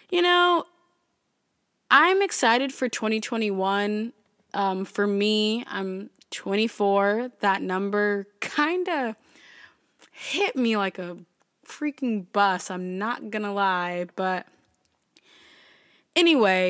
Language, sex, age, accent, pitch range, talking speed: English, female, 20-39, American, 195-280 Hz, 95 wpm